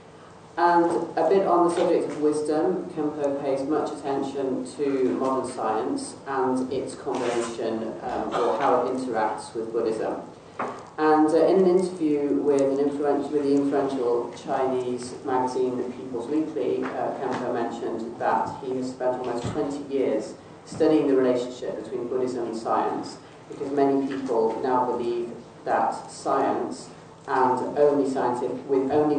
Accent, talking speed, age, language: British, 140 wpm, 40-59, English